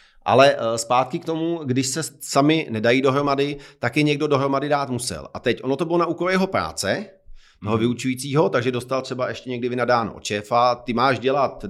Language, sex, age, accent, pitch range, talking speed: Czech, male, 40-59, native, 120-150 Hz, 180 wpm